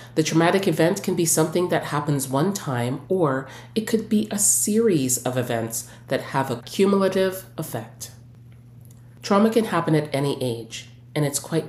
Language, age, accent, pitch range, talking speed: English, 30-49, American, 120-160 Hz, 165 wpm